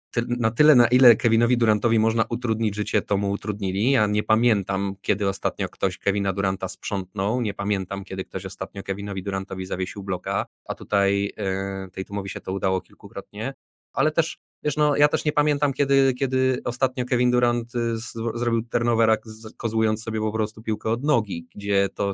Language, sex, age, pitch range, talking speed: Polish, male, 20-39, 100-115 Hz, 170 wpm